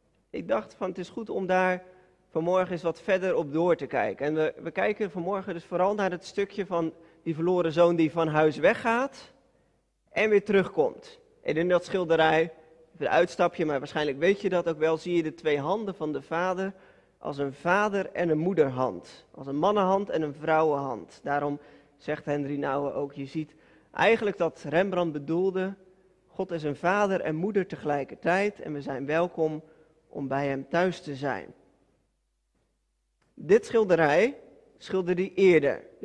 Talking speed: 175 wpm